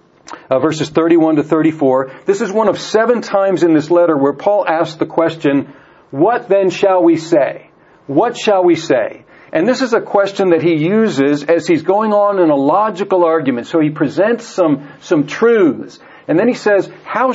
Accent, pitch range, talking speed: American, 160-215 Hz, 190 wpm